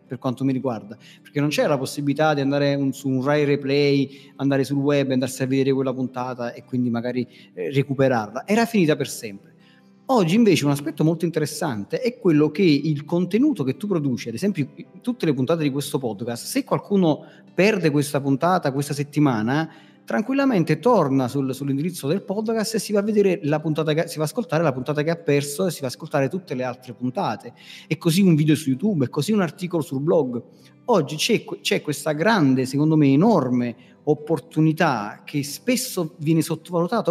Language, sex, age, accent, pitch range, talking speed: Italian, male, 30-49, native, 140-185 Hz, 190 wpm